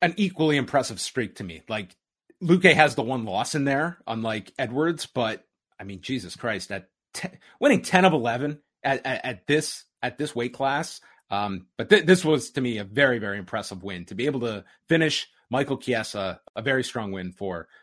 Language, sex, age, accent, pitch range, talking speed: English, male, 30-49, American, 120-165 Hz, 200 wpm